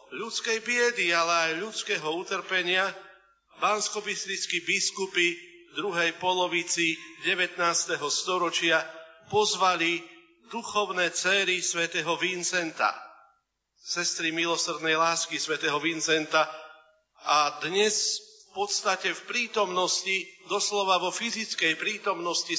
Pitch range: 165-195 Hz